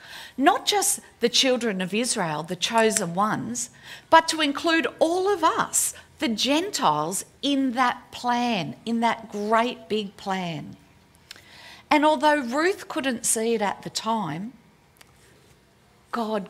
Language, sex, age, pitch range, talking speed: English, female, 50-69, 180-260 Hz, 125 wpm